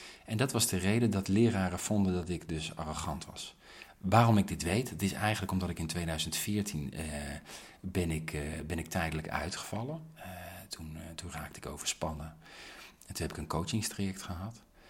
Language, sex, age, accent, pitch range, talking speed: Dutch, male, 40-59, Dutch, 80-115 Hz, 175 wpm